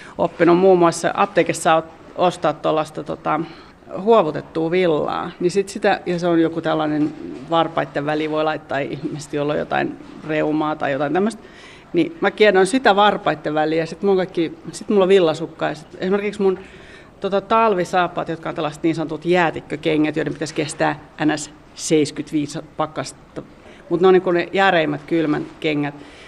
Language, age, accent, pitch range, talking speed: Finnish, 40-59, native, 155-190 Hz, 150 wpm